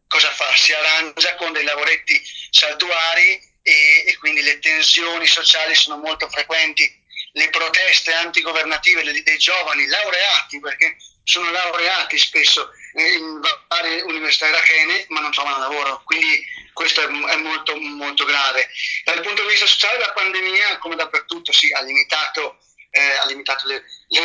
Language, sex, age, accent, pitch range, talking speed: Italian, male, 30-49, native, 160-225 Hz, 150 wpm